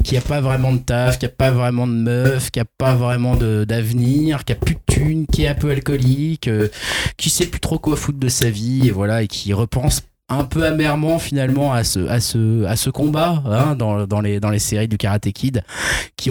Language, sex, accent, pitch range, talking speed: French, male, French, 100-130 Hz, 240 wpm